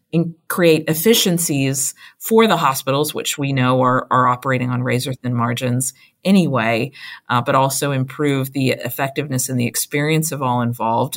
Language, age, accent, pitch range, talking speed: English, 40-59, American, 130-155 Hz, 155 wpm